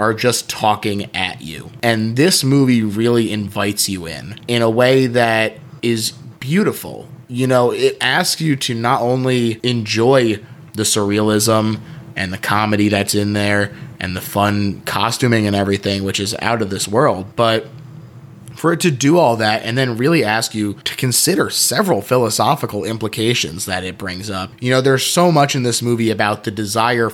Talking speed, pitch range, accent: 175 wpm, 105-140 Hz, American